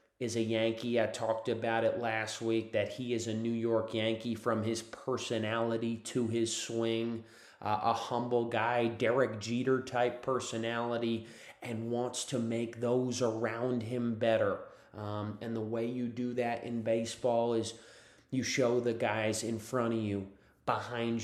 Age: 30-49